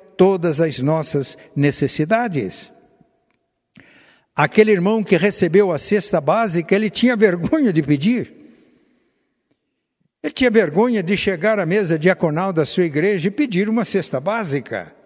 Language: Portuguese